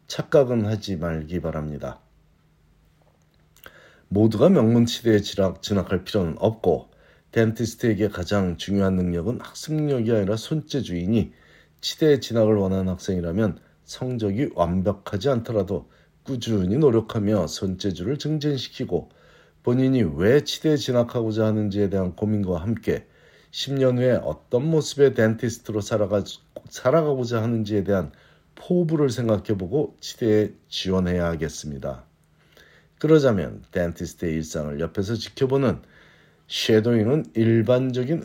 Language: Korean